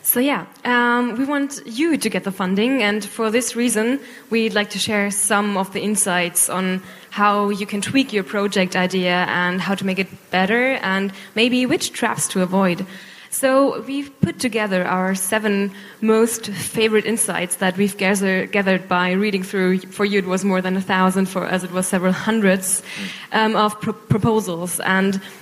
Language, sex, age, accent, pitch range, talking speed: German, female, 10-29, German, 185-215 Hz, 175 wpm